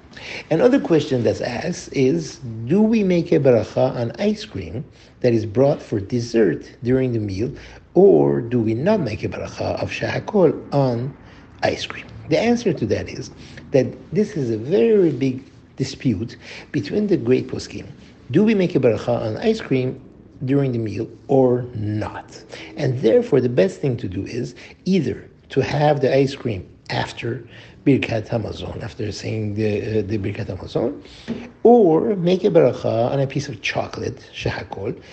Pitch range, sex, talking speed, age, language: 115-145 Hz, male, 165 wpm, 60-79, English